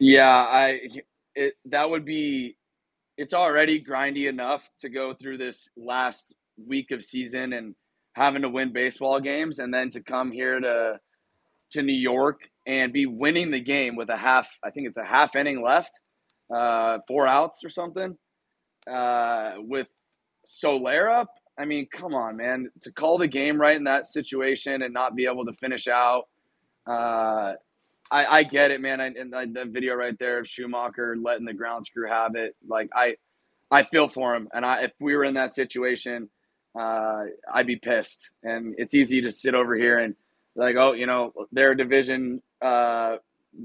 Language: English